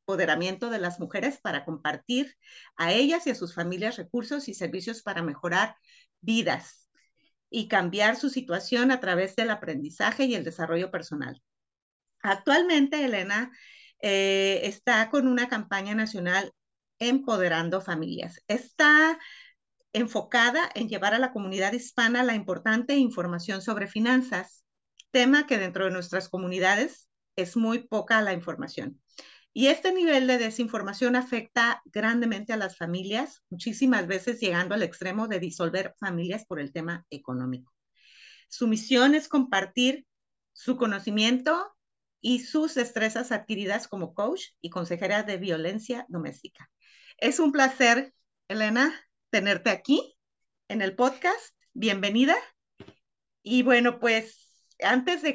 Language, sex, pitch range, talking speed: Spanish, female, 190-255 Hz, 130 wpm